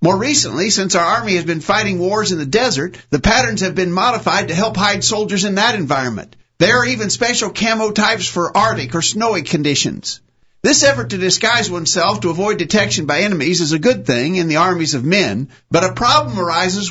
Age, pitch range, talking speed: 50-69, 165-205 Hz, 205 wpm